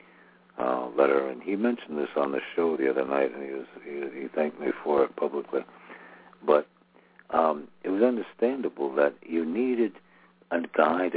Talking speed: 170 wpm